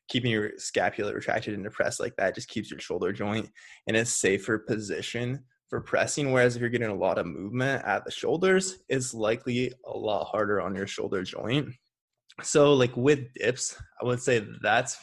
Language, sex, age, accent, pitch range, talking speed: English, male, 20-39, American, 110-145 Hz, 190 wpm